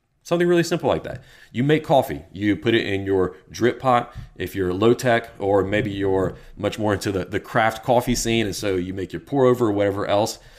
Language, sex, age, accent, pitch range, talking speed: English, male, 30-49, American, 95-125 Hz, 225 wpm